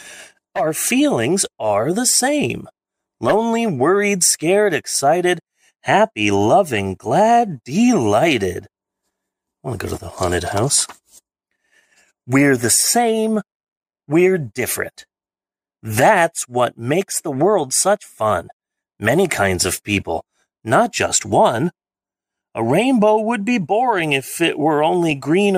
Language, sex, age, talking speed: English, male, 30-49, 115 wpm